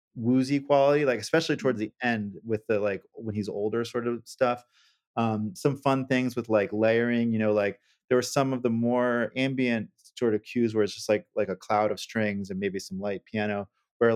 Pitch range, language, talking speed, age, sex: 110-135 Hz, English, 215 wpm, 30-49, male